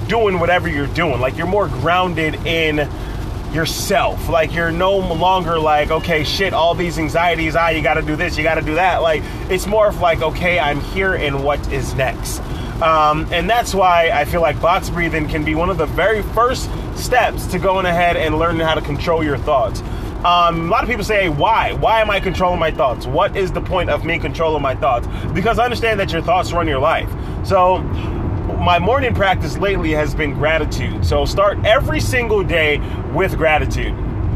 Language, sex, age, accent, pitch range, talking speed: English, male, 20-39, American, 140-180 Hz, 200 wpm